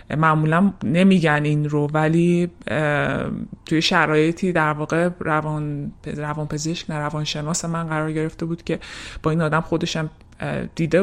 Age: 20-39